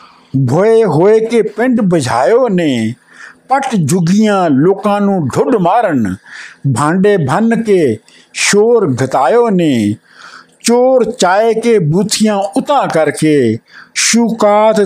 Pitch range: 160-220 Hz